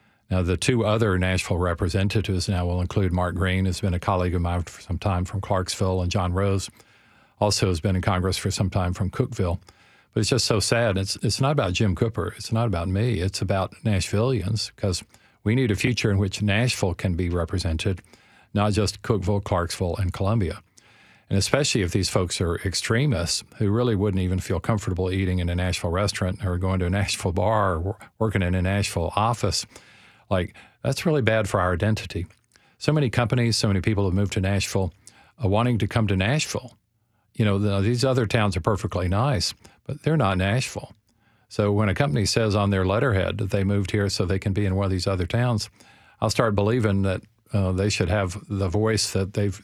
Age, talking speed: 50-69, 205 wpm